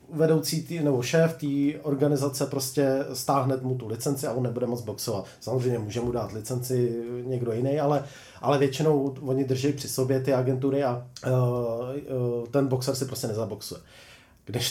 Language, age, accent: Czech, 30-49, native